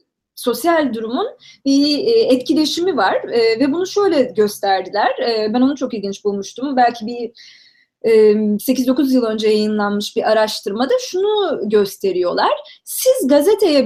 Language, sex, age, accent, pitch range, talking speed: Turkish, female, 30-49, native, 210-285 Hz, 115 wpm